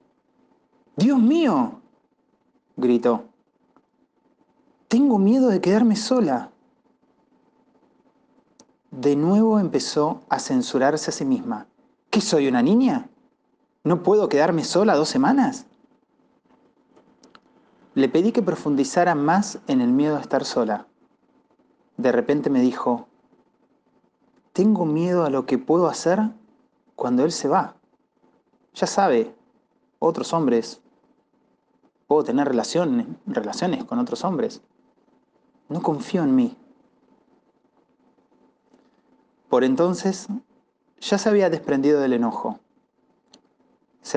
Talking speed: 105 wpm